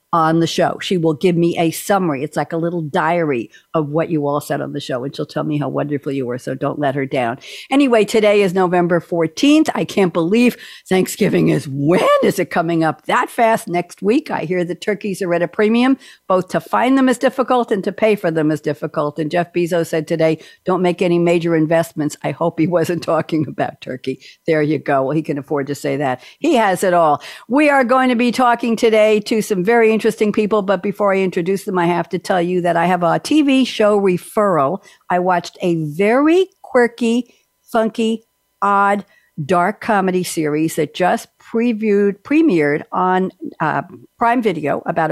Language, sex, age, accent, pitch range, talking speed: English, female, 60-79, American, 155-205 Hz, 205 wpm